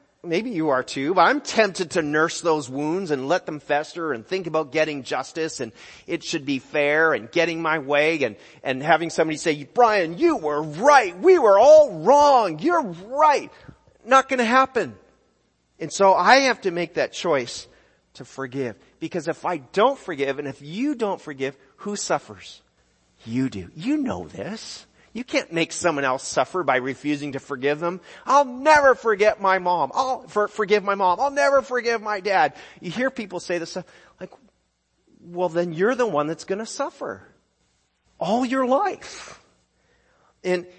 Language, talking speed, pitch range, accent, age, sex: English, 175 wpm, 150-230 Hz, American, 40-59, male